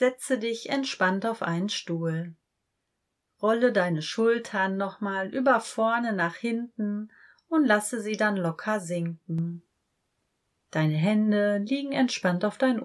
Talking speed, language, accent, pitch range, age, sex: 120 wpm, German, German, 175-225 Hz, 30-49, female